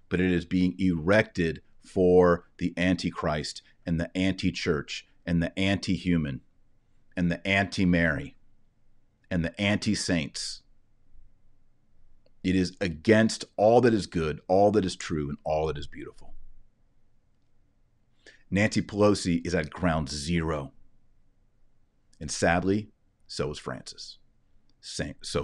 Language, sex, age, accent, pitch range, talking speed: English, male, 40-59, American, 85-110 Hz, 115 wpm